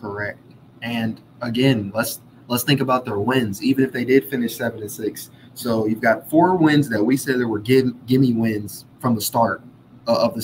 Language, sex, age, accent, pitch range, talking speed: English, male, 20-39, American, 115-135 Hz, 195 wpm